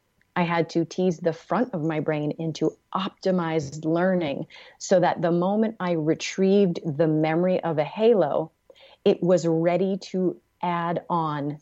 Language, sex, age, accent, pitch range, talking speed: English, female, 30-49, American, 155-185 Hz, 150 wpm